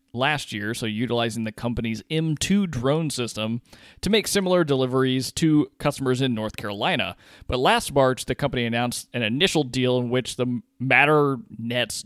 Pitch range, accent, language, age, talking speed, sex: 110-135 Hz, American, English, 20-39, 155 wpm, male